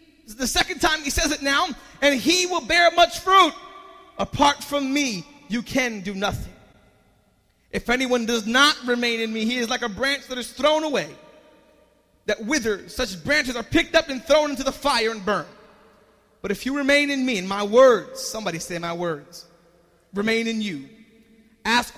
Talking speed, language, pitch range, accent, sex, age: 185 wpm, English, 190-255 Hz, American, male, 30-49